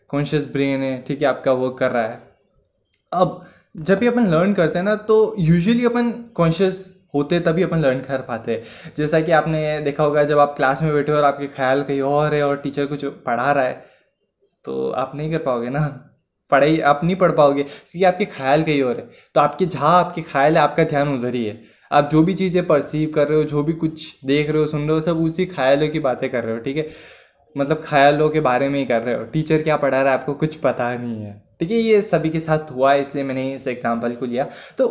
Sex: male